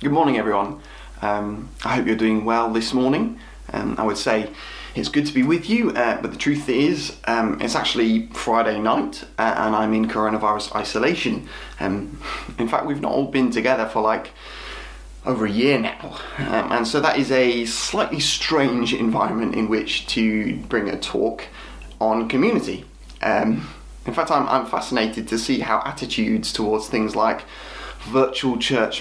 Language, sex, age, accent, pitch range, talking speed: English, male, 20-39, British, 110-130 Hz, 170 wpm